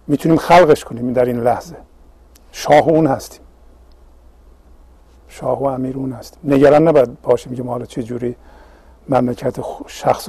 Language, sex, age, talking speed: Persian, male, 50-69, 140 wpm